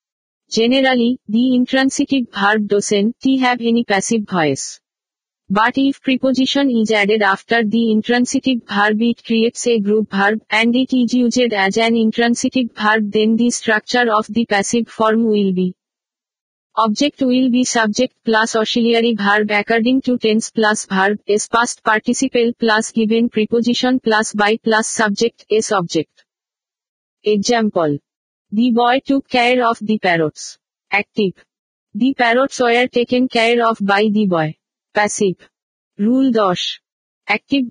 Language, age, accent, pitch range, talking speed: Bengali, 50-69, native, 210-245 Hz, 135 wpm